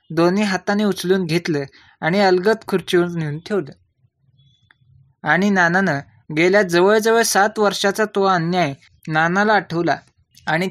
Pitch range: 155-205 Hz